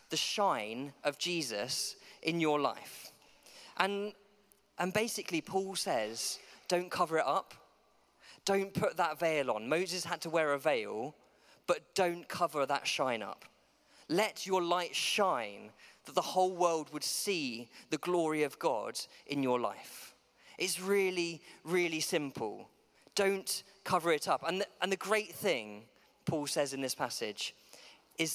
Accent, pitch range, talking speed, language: British, 150-185 Hz, 145 wpm, English